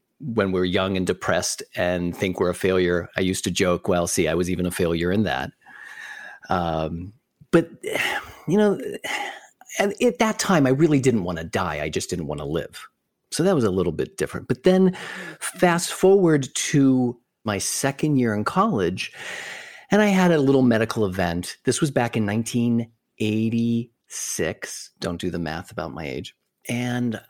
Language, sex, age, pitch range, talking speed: English, male, 40-59, 90-125 Hz, 175 wpm